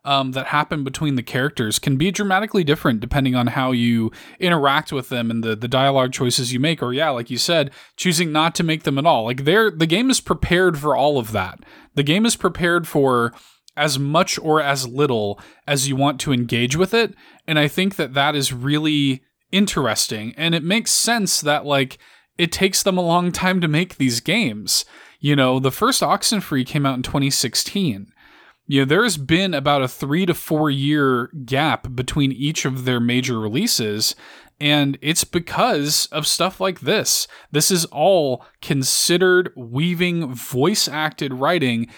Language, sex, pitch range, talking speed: English, male, 130-170 Hz, 180 wpm